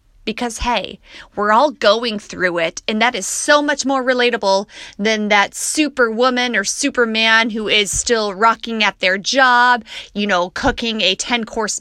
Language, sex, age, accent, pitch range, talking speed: English, female, 30-49, American, 200-250 Hz, 165 wpm